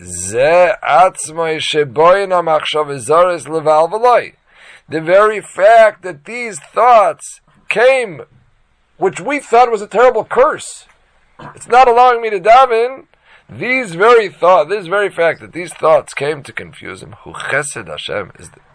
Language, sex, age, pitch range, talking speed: English, male, 40-59, 135-185 Hz, 120 wpm